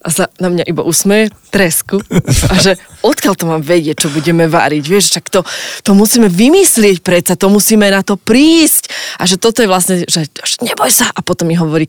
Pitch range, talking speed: 170-205 Hz, 200 wpm